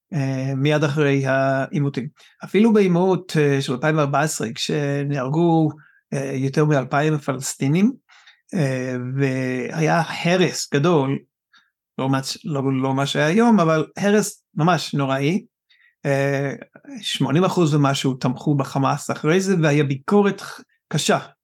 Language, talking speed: Hebrew, 90 wpm